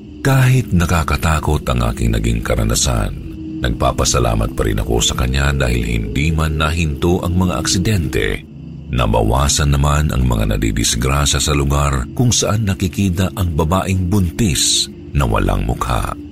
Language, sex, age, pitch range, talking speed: Filipino, male, 50-69, 70-95 Hz, 130 wpm